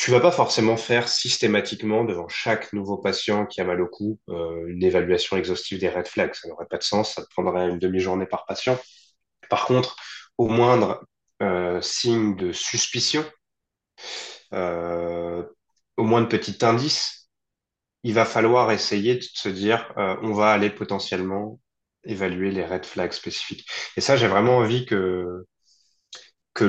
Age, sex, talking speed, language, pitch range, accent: 30-49, male, 155 wpm, French, 90-110 Hz, French